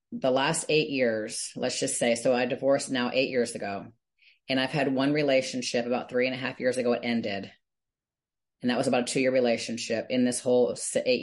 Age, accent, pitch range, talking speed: 30-49, American, 130-165 Hz, 210 wpm